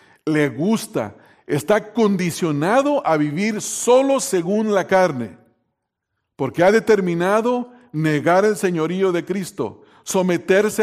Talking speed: 105 wpm